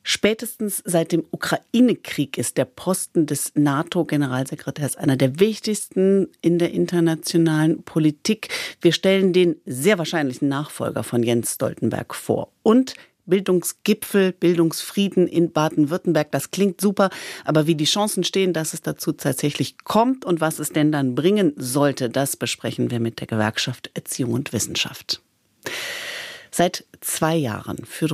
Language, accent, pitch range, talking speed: German, German, 140-180 Hz, 135 wpm